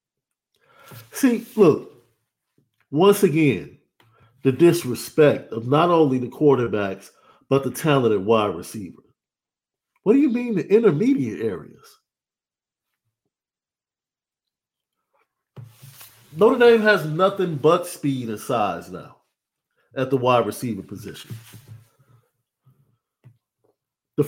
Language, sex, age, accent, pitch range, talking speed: English, male, 50-69, American, 120-160 Hz, 95 wpm